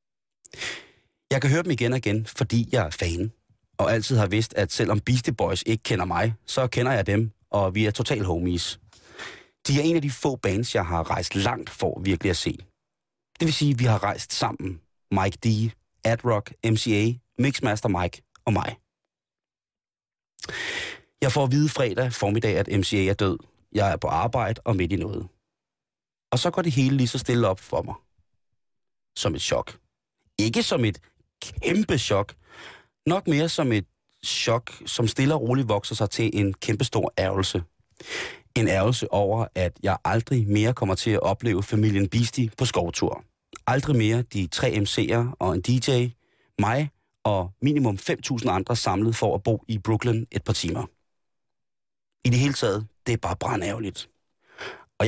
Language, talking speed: Danish, 175 wpm